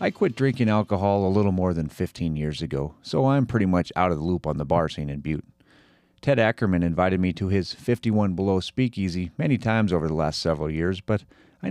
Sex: male